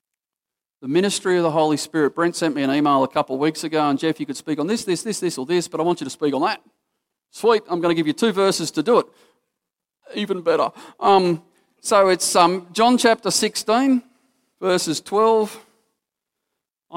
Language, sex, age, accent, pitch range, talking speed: English, male, 40-59, Australian, 145-180 Hz, 205 wpm